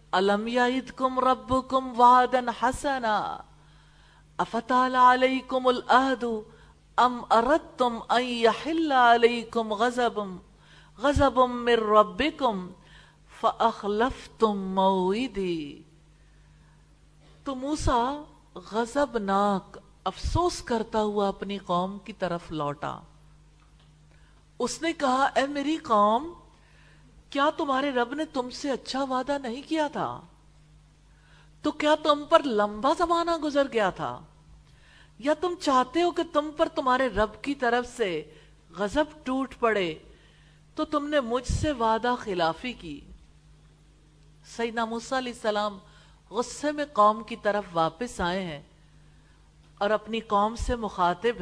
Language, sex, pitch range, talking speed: English, female, 170-260 Hz, 95 wpm